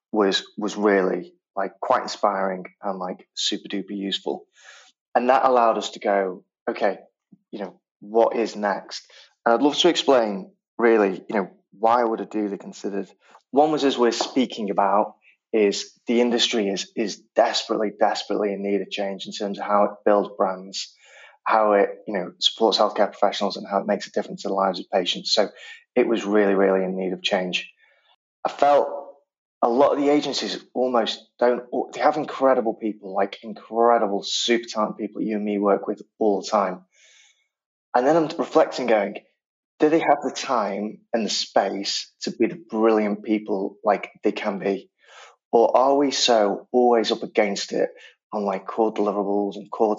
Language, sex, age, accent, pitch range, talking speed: English, male, 30-49, British, 100-125 Hz, 180 wpm